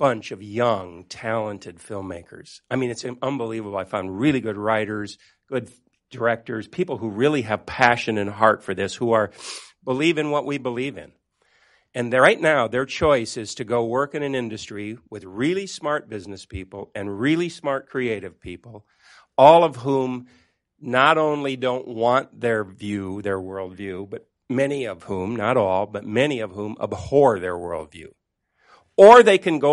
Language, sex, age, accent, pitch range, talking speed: English, male, 50-69, American, 105-135 Hz, 170 wpm